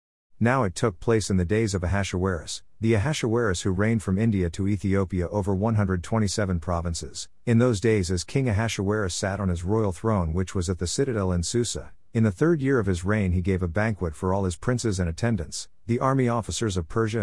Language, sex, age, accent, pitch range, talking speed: English, male, 50-69, American, 90-115 Hz, 210 wpm